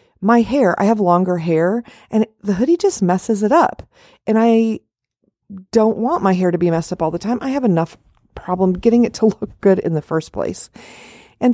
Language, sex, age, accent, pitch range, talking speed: English, female, 40-59, American, 175-235 Hz, 210 wpm